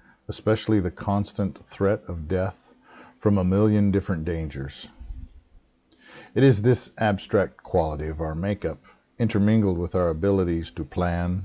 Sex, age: male, 50-69